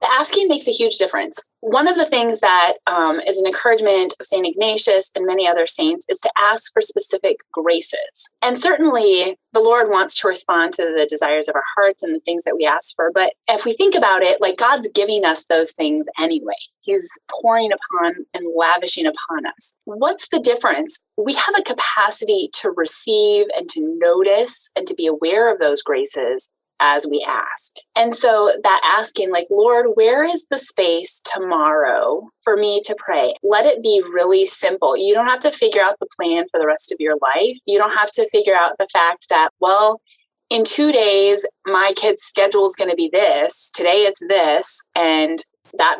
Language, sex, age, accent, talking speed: English, female, 20-39, American, 195 wpm